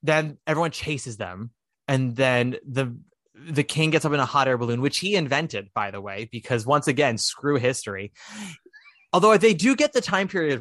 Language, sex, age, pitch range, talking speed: English, male, 20-39, 120-165 Hz, 190 wpm